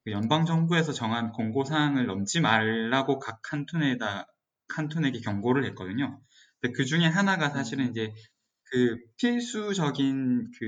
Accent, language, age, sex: native, Korean, 20-39, male